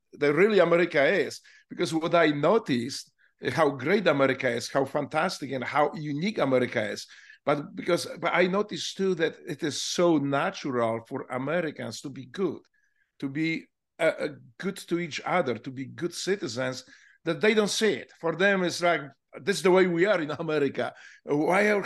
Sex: male